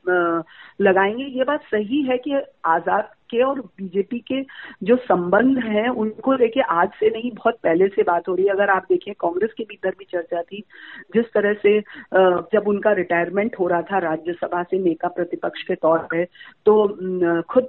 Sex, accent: female, native